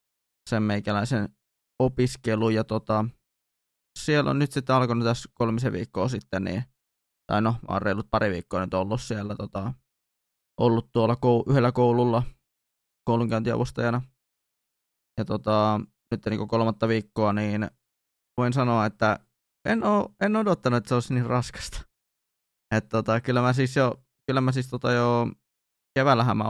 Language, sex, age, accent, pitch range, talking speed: Finnish, male, 20-39, native, 110-125 Hz, 140 wpm